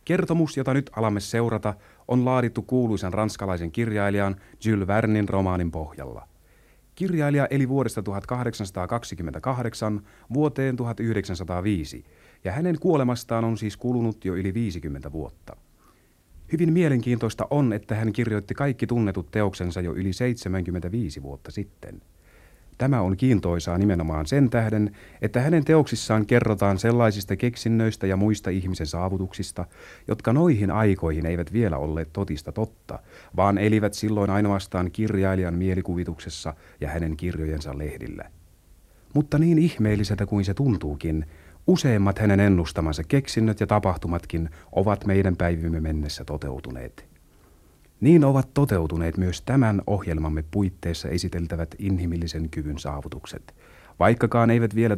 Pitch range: 85-115 Hz